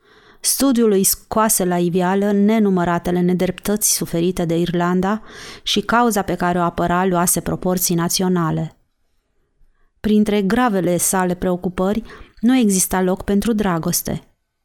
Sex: female